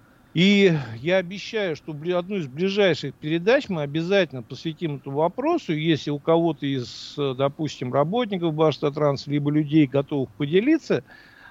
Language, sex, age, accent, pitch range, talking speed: Russian, male, 50-69, native, 145-185 Hz, 125 wpm